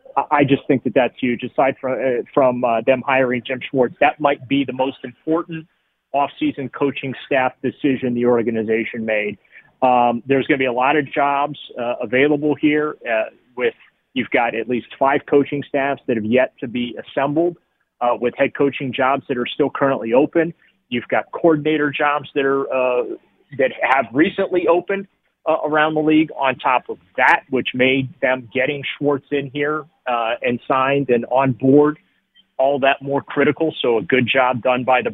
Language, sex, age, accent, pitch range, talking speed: English, male, 30-49, American, 125-145 Hz, 185 wpm